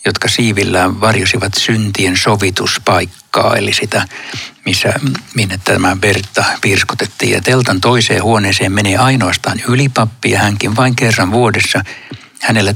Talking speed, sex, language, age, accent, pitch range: 120 wpm, male, Finnish, 60-79, native, 100-120 Hz